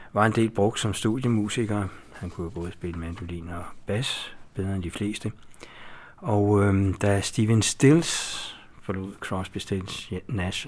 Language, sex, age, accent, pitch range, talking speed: Danish, male, 60-79, native, 85-100 Hz, 145 wpm